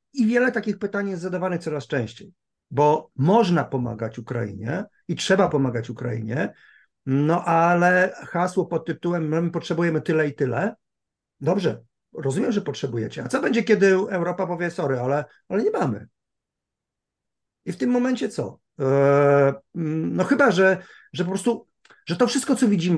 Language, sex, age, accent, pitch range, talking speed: Polish, male, 50-69, native, 145-190 Hz, 150 wpm